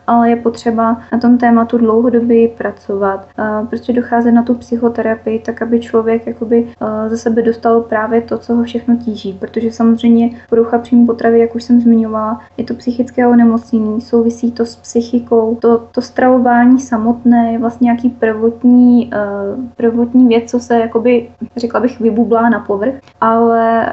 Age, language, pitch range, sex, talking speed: 20-39, Czech, 225-240 Hz, female, 155 wpm